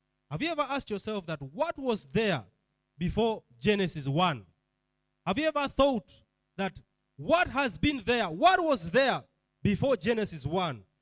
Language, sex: English, male